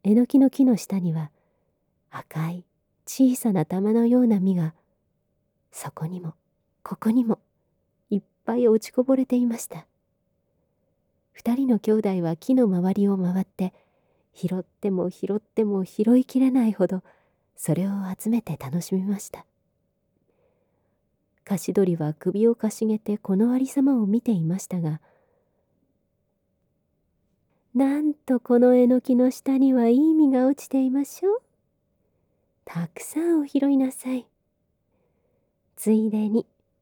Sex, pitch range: female, 175-245 Hz